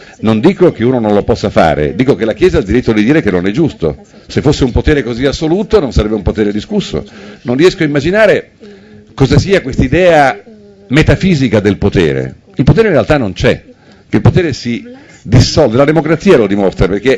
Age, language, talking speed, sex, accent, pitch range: 50-69, Italian, 205 wpm, male, native, 110-180 Hz